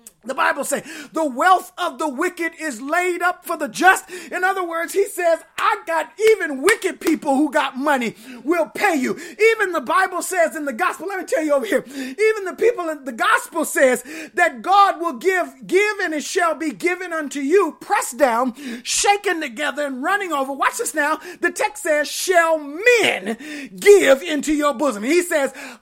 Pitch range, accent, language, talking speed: 295-370 Hz, American, English, 195 wpm